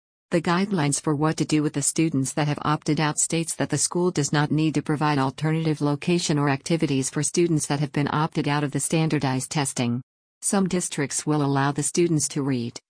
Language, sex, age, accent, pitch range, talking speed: English, female, 50-69, American, 140-165 Hz, 210 wpm